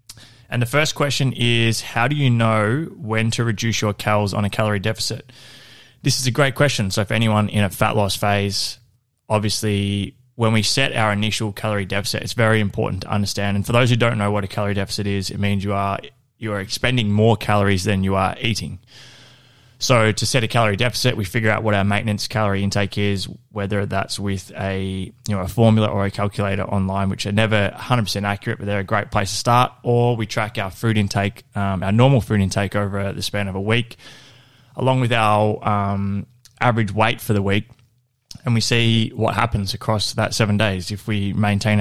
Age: 20-39